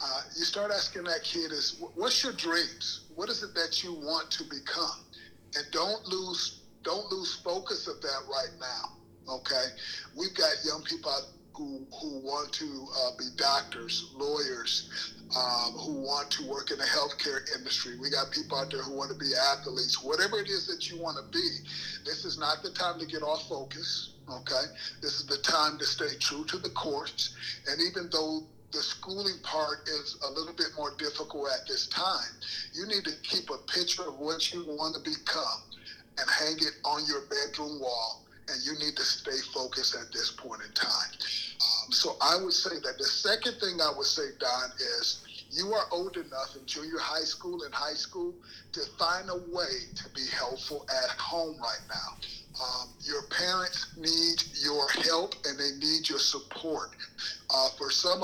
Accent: American